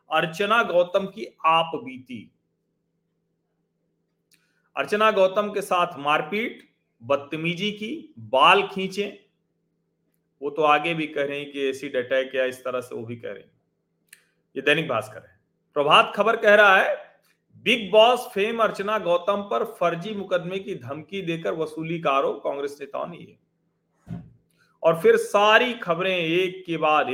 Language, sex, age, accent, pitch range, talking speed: Hindi, male, 40-59, native, 145-195 Hz, 145 wpm